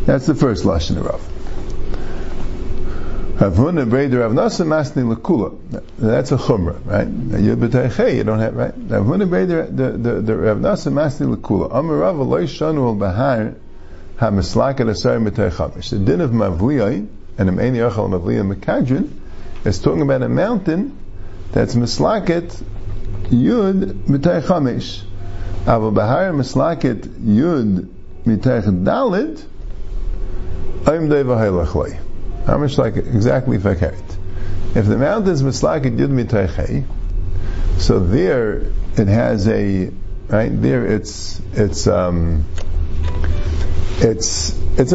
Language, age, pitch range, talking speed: English, 50-69, 90-125 Hz, 95 wpm